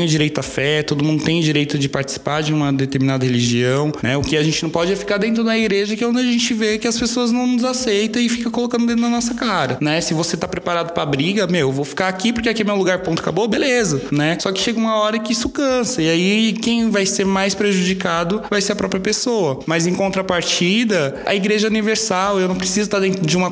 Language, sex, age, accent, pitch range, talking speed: Portuguese, male, 20-39, Brazilian, 140-195 Hz, 250 wpm